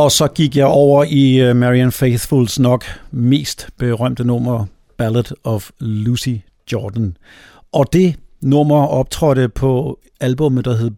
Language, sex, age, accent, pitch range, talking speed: Danish, male, 60-79, native, 115-145 Hz, 130 wpm